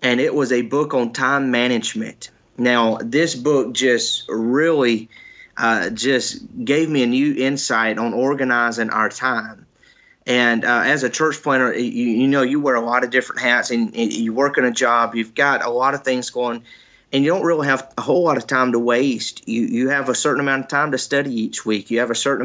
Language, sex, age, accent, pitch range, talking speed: English, male, 30-49, American, 120-140 Hz, 215 wpm